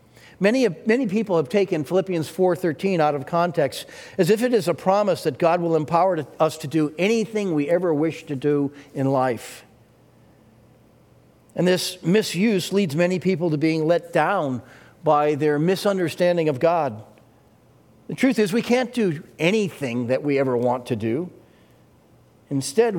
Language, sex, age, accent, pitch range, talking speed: English, male, 50-69, American, 135-190 Hz, 155 wpm